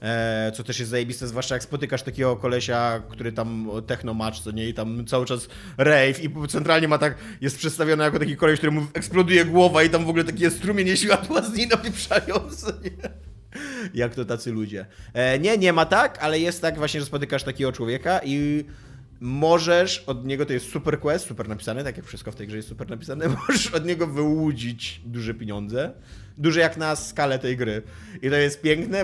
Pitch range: 125-160 Hz